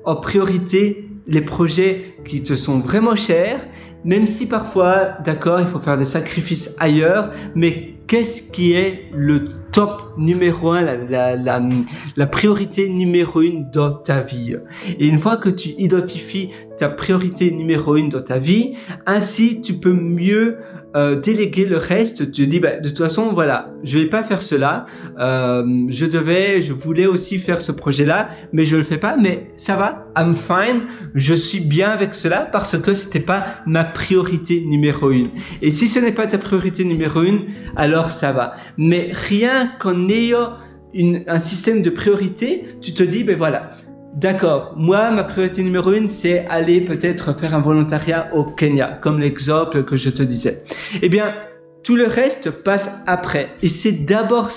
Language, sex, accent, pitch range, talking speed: French, male, French, 150-195 Hz, 175 wpm